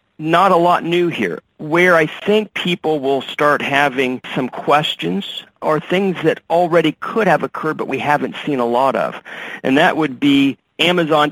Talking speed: 175 wpm